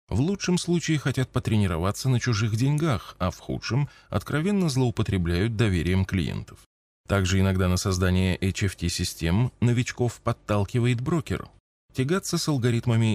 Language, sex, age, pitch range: Russian, male, 20-39, 95-130 Hz